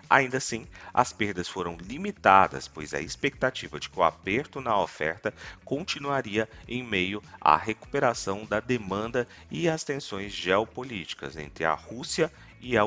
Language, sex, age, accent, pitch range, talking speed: Portuguese, male, 40-59, Brazilian, 90-120 Hz, 145 wpm